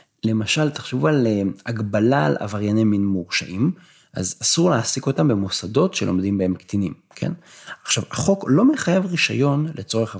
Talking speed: 135 wpm